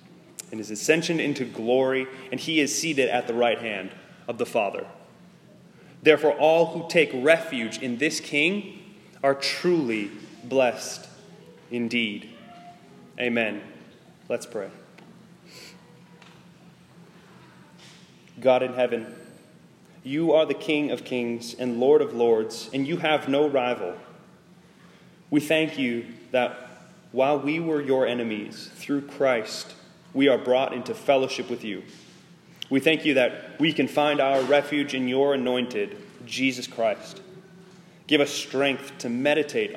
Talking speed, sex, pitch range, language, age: 130 wpm, male, 120-160 Hz, English, 20-39